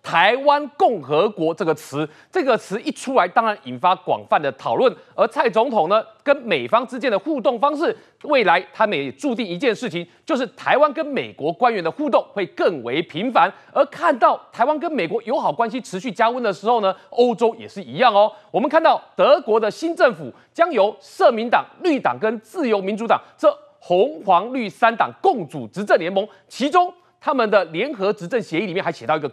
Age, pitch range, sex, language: 30-49, 205-295 Hz, male, Chinese